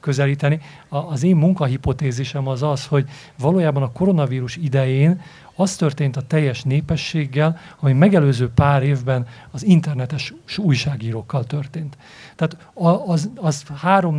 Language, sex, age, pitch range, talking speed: Hungarian, male, 40-59, 135-165 Hz, 125 wpm